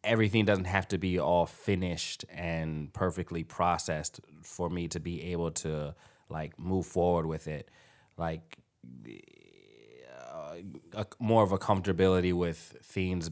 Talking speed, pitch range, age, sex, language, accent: 135 wpm, 80-95 Hz, 30-49, male, English, American